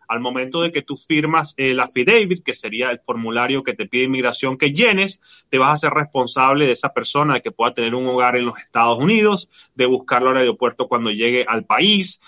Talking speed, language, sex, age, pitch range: 215 wpm, Spanish, male, 30-49, 125-170 Hz